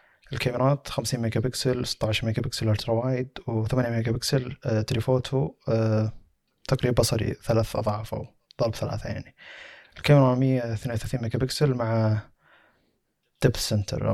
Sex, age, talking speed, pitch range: male, 20-39, 125 wpm, 110-125 Hz